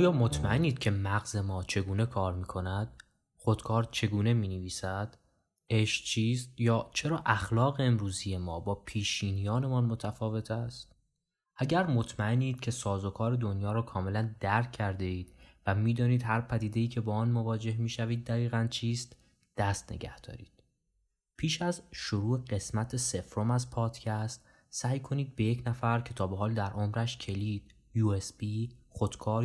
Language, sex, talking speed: Persian, male, 145 wpm